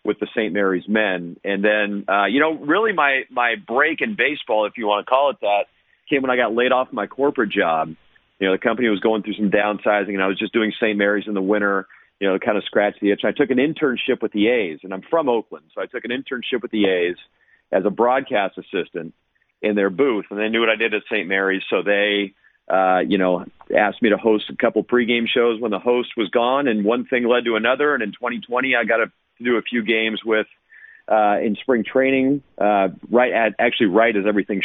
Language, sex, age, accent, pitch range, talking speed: English, male, 40-59, American, 100-125 Hz, 240 wpm